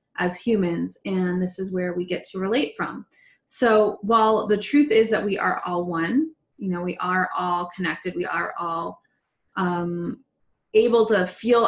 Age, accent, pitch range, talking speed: 20-39, American, 180-215 Hz, 175 wpm